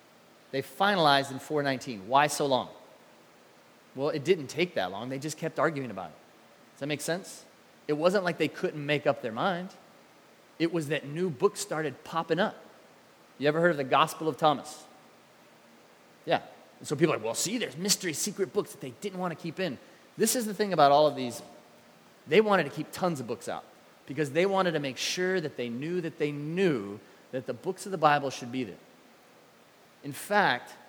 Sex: male